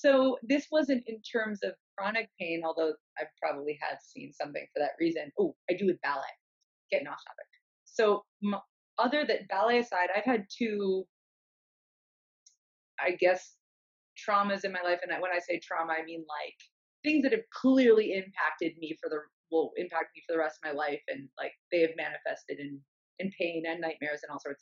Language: English